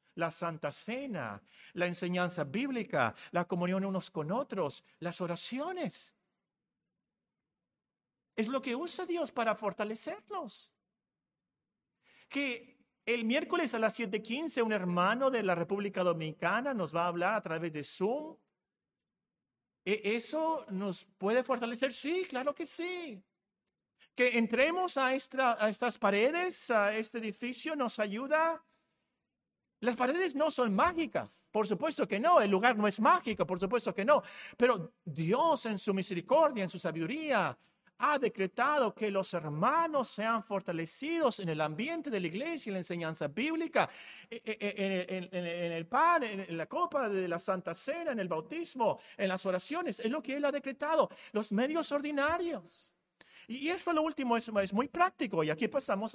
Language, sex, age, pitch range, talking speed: Spanish, male, 50-69, 185-285 Hz, 150 wpm